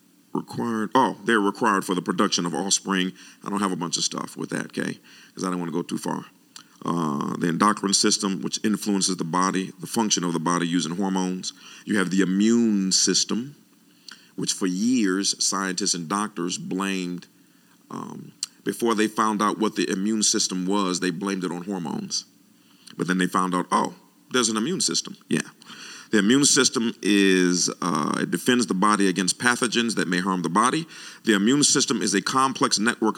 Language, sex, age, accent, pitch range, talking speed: English, male, 40-59, American, 90-115 Hz, 185 wpm